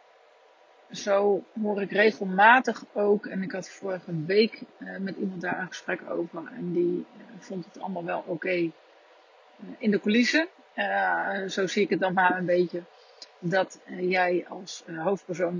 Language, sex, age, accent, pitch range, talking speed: Dutch, female, 40-59, Dutch, 180-215 Hz, 165 wpm